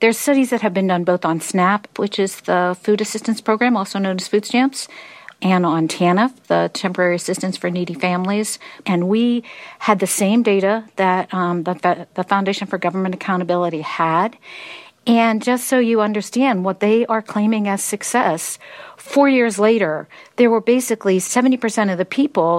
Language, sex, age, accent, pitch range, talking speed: English, female, 50-69, American, 180-220 Hz, 175 wpm